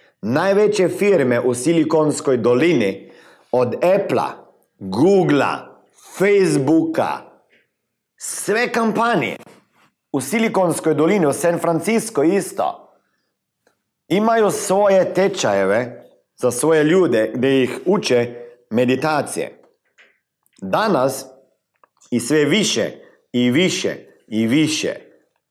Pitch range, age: 120-185 Hz, 50-69